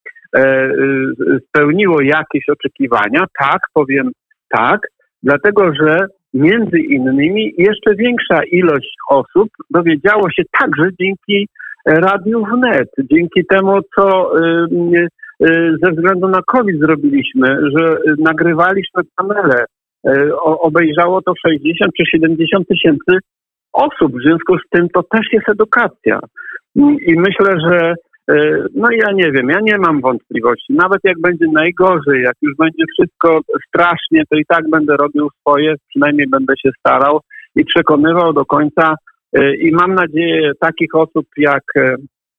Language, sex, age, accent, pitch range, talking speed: Polish, male, 50-69, native, 150-205 Hz, 120 wpm